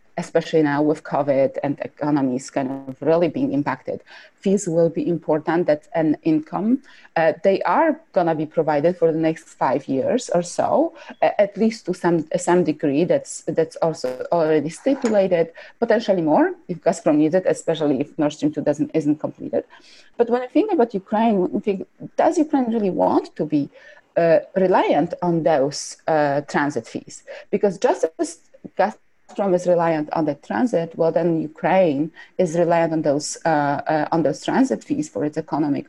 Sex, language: female, English